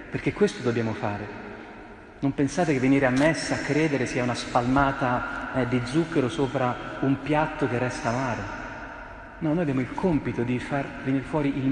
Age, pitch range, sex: 40-59, 110-145 Hz, male